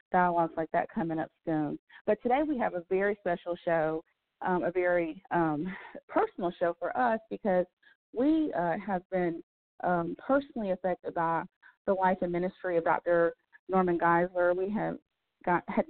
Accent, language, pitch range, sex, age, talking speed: American, English, 170-200 Hz, female, 30-49, 160 wpm